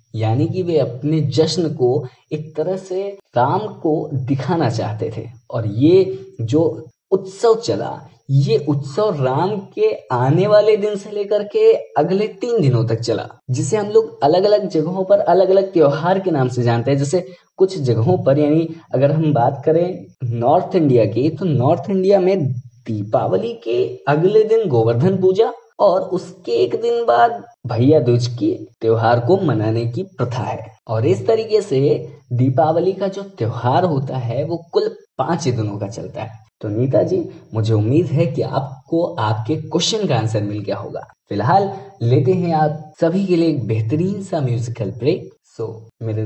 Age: 20-39